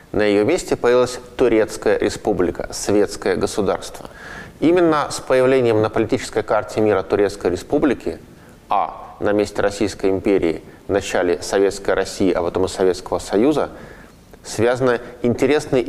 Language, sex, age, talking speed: Russian, male, 20-39, 125 wpm